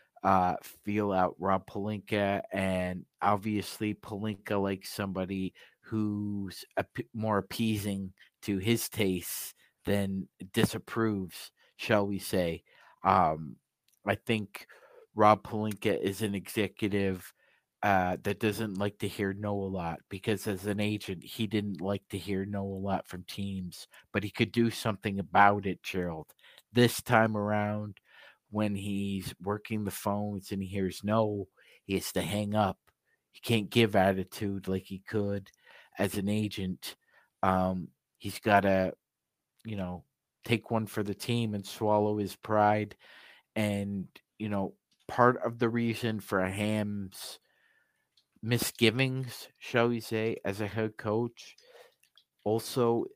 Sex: male